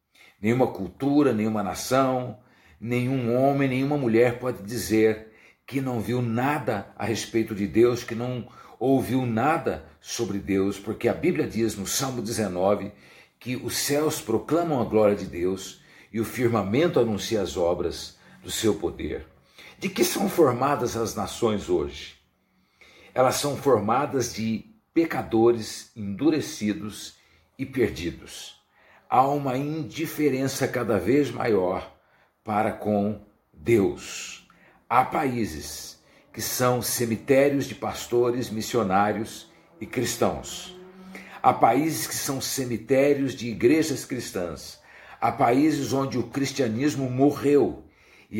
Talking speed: 120 wpm